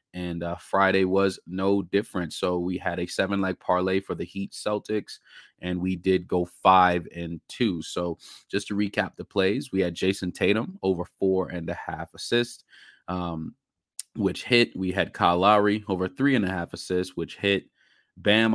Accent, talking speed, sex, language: American, 180 wpm, male, English